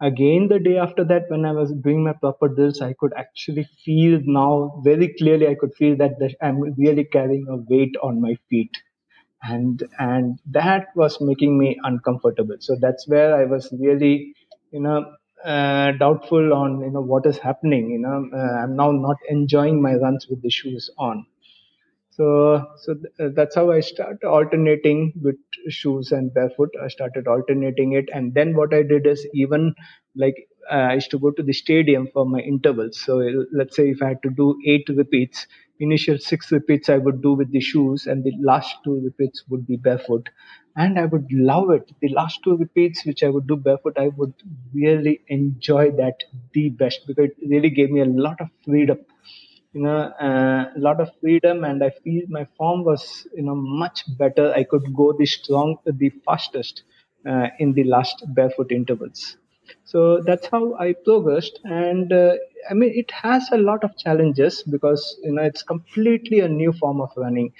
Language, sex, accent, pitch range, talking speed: English, male, Indian, 135-155 Hz, 190 wpm